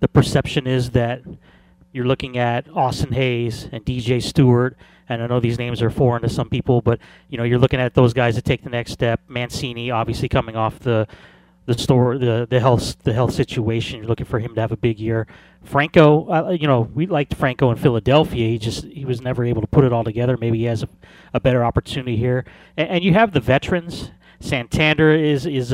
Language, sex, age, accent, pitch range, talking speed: English, male, 30-49, American, 120-140 Hz, 220 wpm